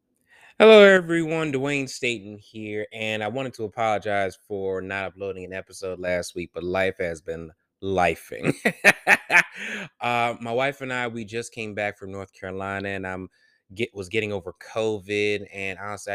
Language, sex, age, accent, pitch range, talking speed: English, male, 20-39, American, 95-115 Hz, 160 wpm